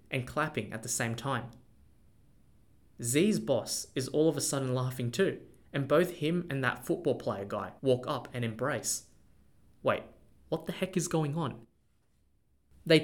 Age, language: 20-39, English